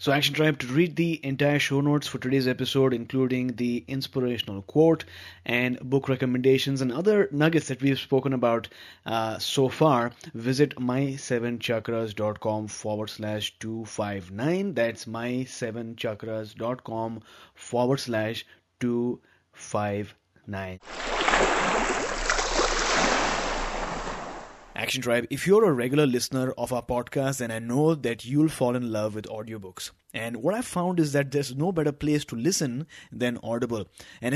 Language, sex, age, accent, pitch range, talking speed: English, male, 20-39, Indian, 120-155 Hz, 130 wpm